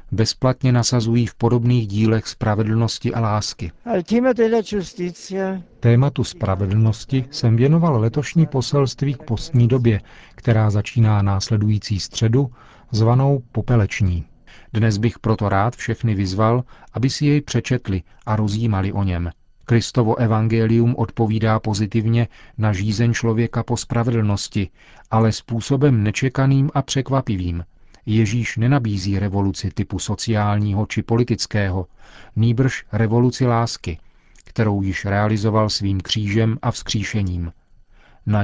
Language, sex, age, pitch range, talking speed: Czech, male, 40-59, 105-130 Hz, 110 wpm